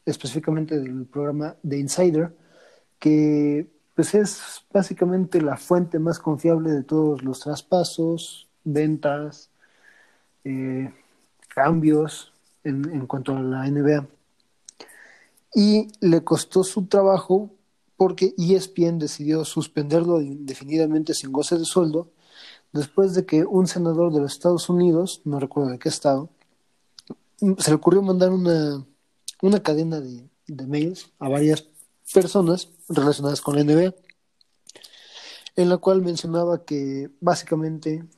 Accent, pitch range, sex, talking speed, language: Mexican, 150-175 Hz, male, 120 wpm, Spanish